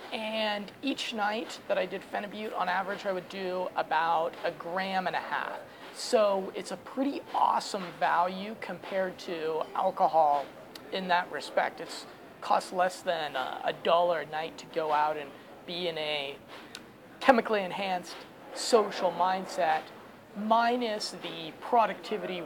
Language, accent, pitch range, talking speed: English, American, 175-225 Hz, 140 wpm